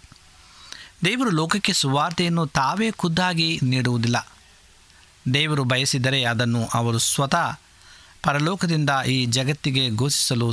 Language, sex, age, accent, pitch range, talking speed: Kannada, male, 50-69, native, 110-150 Hz, 85 wpm